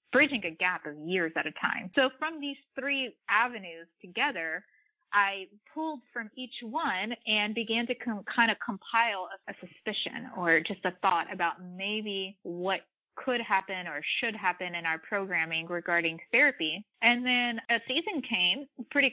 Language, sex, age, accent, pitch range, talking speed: English, female, 30-49, American, 180-230 Hz, 160 wpm